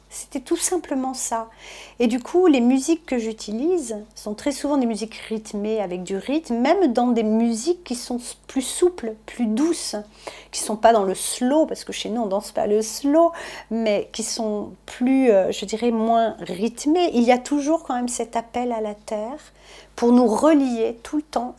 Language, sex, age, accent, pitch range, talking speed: French, female, 40-59, French, 220-270 Hz, 205 wpm